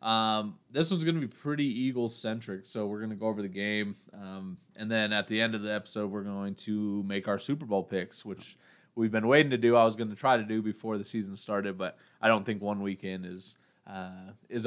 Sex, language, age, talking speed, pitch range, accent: male, English, 20-39, 235 wpm, 95-115 Hz, American